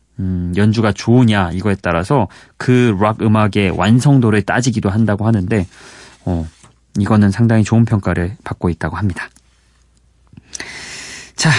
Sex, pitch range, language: male, 100-130 Hz, Korean